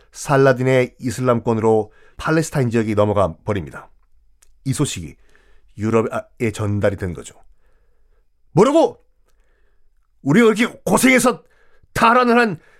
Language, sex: Korean, male